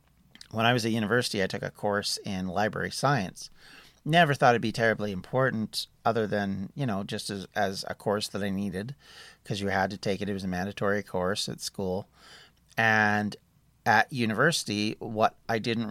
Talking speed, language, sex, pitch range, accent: 185 wpm, English, male, 100-125 Hz, American